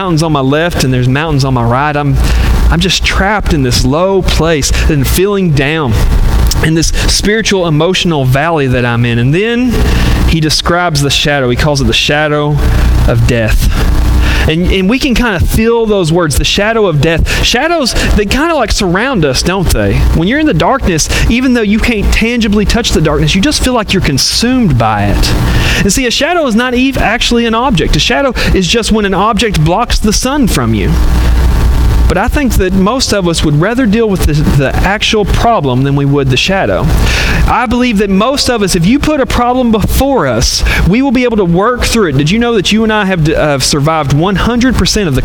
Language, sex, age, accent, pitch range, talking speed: English, male, 30-49, American, 140-225 Hz, 215 wpm